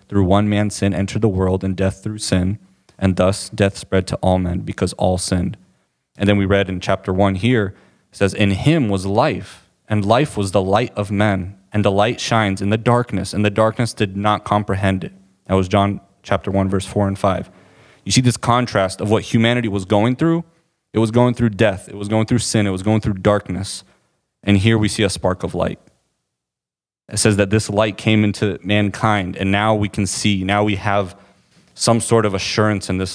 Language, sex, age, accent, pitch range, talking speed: English, male, 30-49, American, 95-110 Hz, 215 wpm